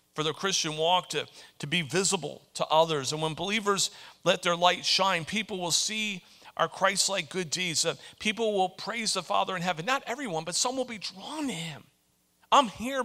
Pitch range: 135-200 Hz